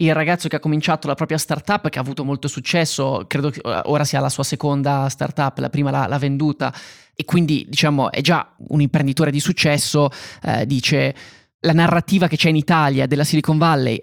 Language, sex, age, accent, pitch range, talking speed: Italian, male, 20-39, native, 140-160 Hz, 195 wpm